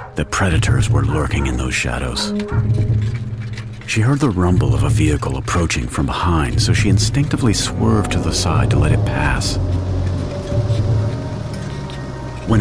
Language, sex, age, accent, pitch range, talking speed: English, male, 50-69, American, 90-115 Hz, 140 wpm